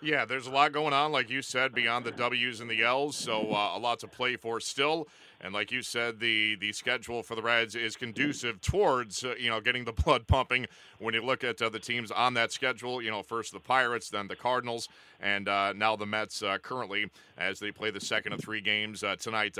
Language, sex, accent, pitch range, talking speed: English, male, American, 115-130 Hz, 240 wpm